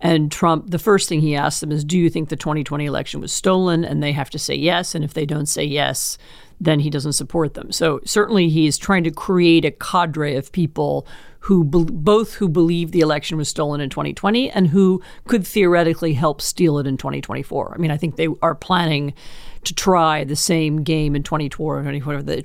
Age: 40-59